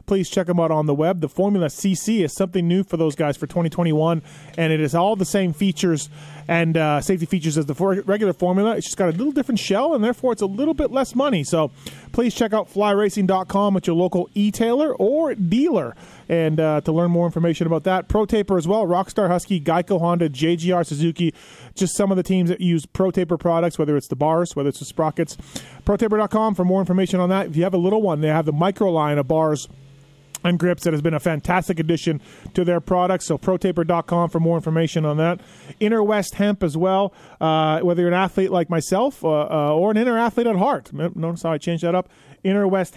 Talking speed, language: 220 wpm, English